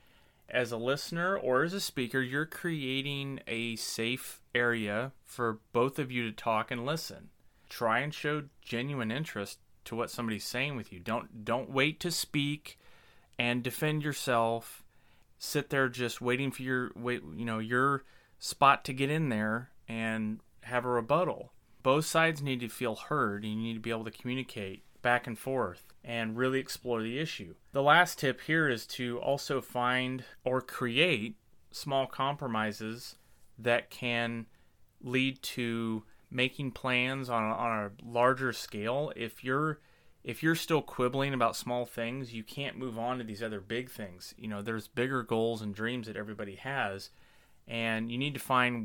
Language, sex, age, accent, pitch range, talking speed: English, male, 30-49, American, 115-135 Hz, 165 wpm